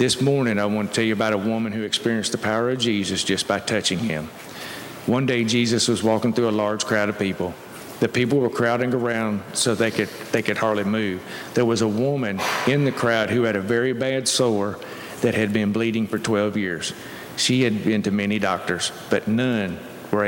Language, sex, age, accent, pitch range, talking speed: English, male, 40-59, American, 105-125 Hz, 215 wpm